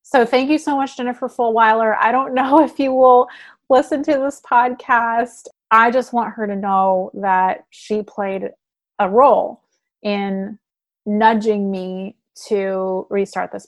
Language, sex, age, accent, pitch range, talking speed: English, female, 30-49, American, 205-255 Hz, 150 wpm